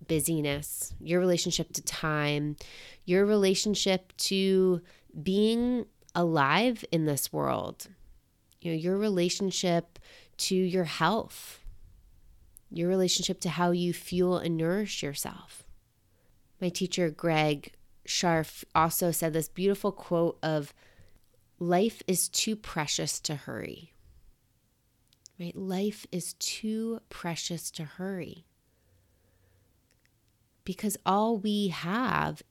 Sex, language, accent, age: female, English, American, 30-49